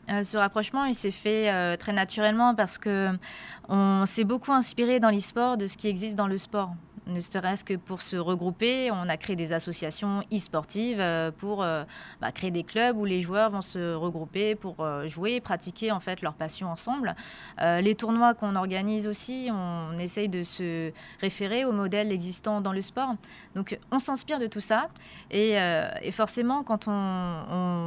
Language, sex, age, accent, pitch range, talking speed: French, female, 20-39, French, 180-220 Hz, 190 wpm